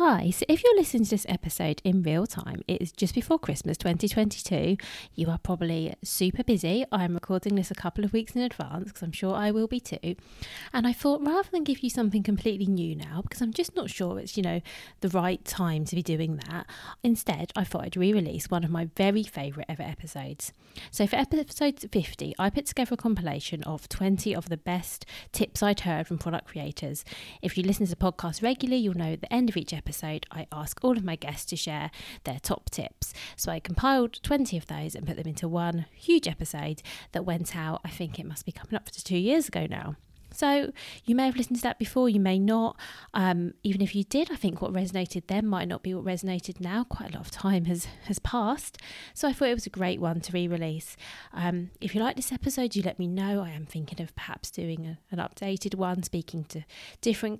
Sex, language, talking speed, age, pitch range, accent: female, English, 230 wpm, 20-39, 165-210 Hz, British